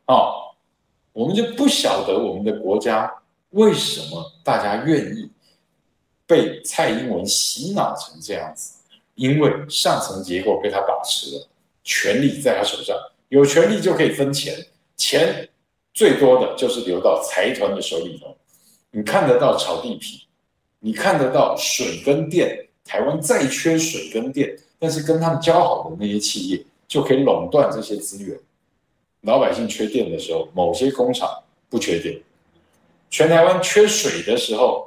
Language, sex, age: Chinese, male, 50-69